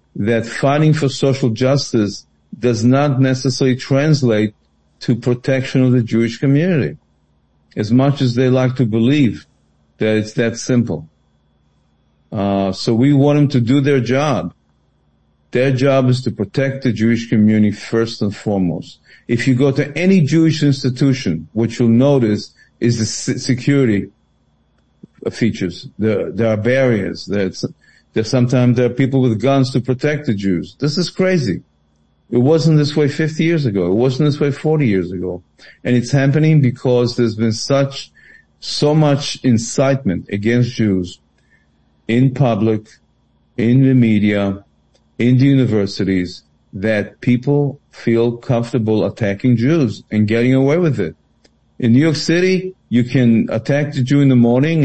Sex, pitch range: male, 105-135 Hz